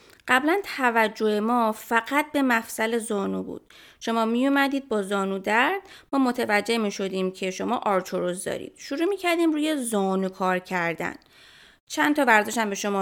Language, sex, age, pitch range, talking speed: Persian, female, 20-39, 195-270 Hz, 160 wpm